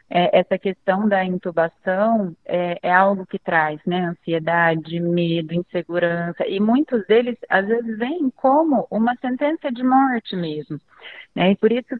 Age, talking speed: 30-49, 140 wpm